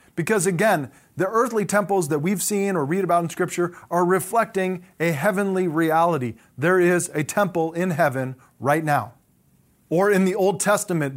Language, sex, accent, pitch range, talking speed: English, male, American, 150-180 Hz, 165 wpm